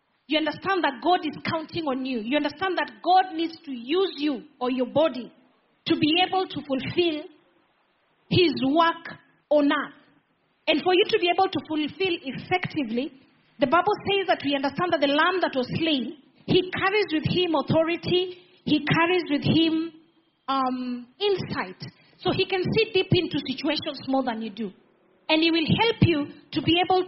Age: 30-49